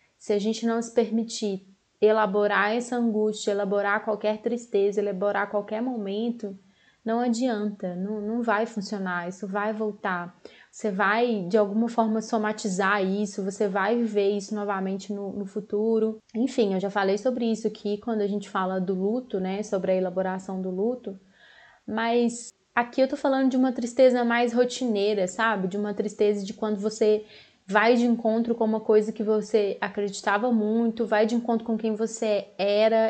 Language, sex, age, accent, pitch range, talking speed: Portuguese, female, 20-39, Brazilian, 205-230 Hz, 165 wpm